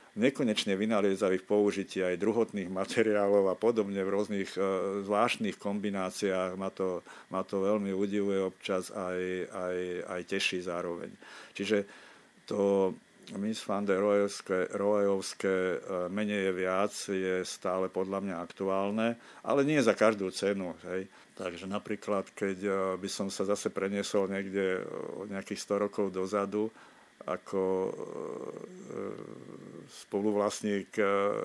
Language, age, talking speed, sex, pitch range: Slovak, 50-69, 115 wpm, male, 95-105 Hz